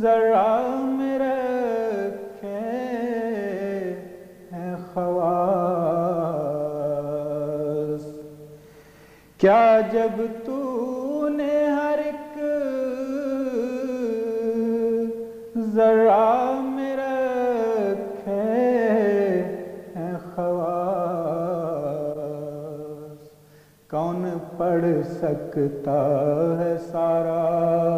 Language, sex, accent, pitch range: English, male, Indian, 150-225 Hz